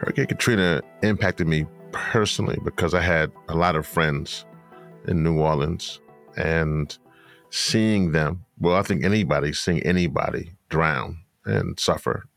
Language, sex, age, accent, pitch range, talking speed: English, male, 40-59, American, 80-95 Hz, 130 wpm